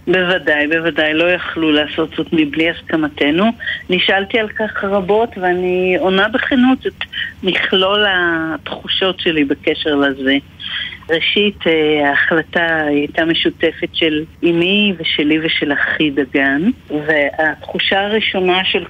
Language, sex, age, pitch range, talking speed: Hebrew, female, 50-69, 160-210 Hz, 110 wpm